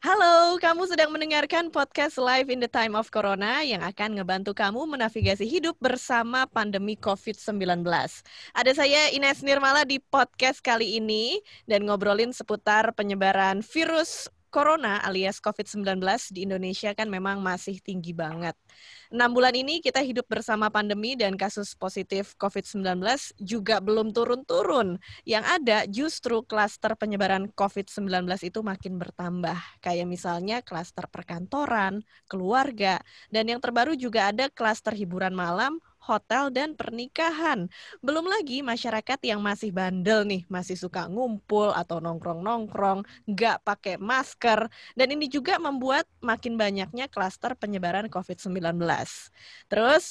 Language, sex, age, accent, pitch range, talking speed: Indonesian, female, 20-39, native, 195-265 Hz, 130 wpm